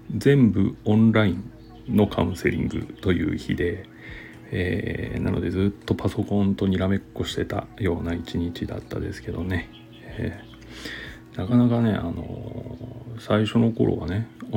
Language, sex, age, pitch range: Japanese, male, 40-59, 90-115 Hz